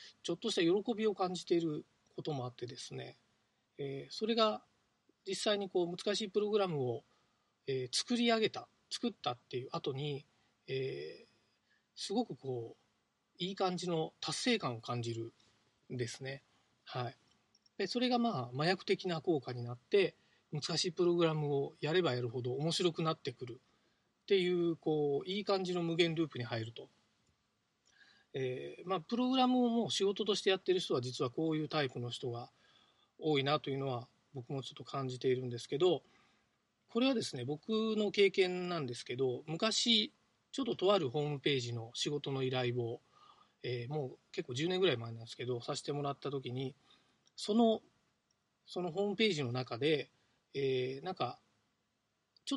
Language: Japanese